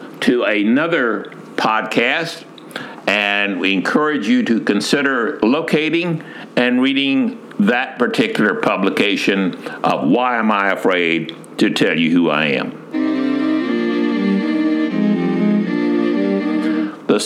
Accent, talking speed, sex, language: American, 95 wpm, male, English